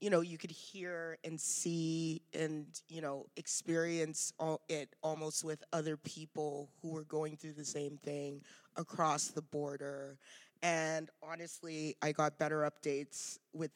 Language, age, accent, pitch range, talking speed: English, 30-49, American, 155-195 Hz, 145 wpm